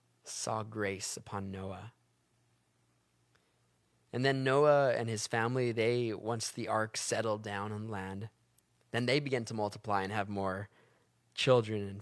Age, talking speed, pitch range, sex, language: 20-39, 140 wpm, 100-125 Hz, male, English